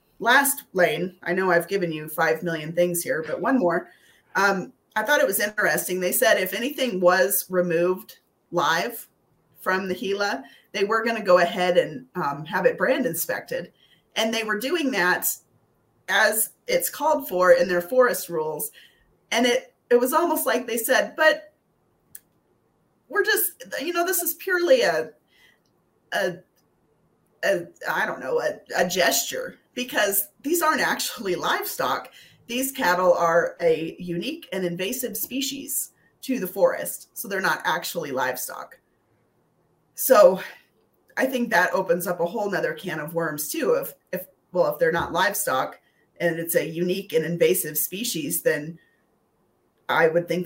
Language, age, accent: English, 30-49, American